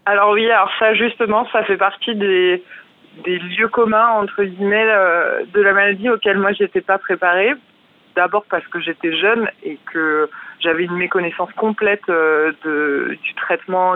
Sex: female